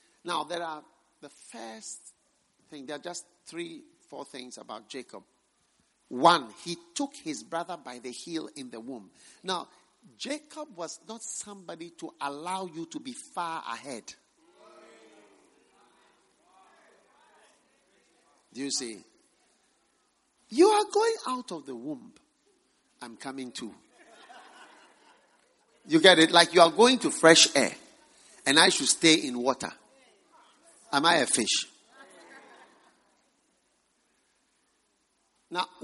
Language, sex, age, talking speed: English, male, 50-69, 120 wpm